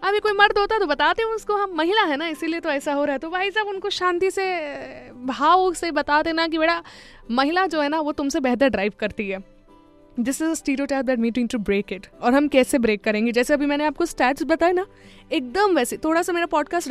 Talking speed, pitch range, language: 250 wpm, 240-330 Hz, Hindi